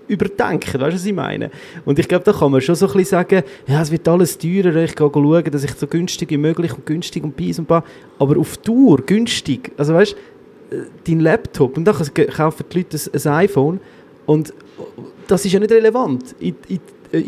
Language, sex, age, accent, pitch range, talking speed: German, male, 30-49, Austrian, 145-180 Hz, 210 wpm